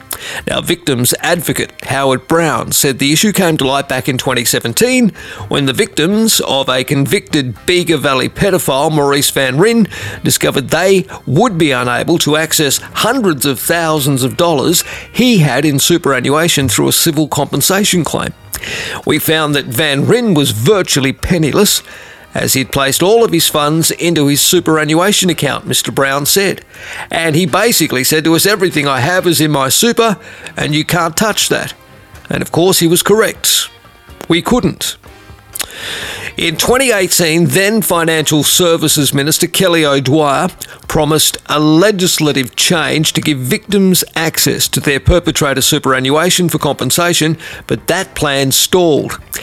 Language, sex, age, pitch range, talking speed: English, male, 40-59, 140-175 Hz, 145 wpm